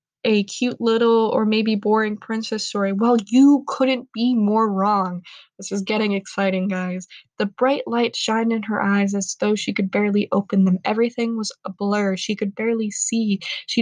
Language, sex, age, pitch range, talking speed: English, female, 20-39, 210-255 Hz, 180 wpm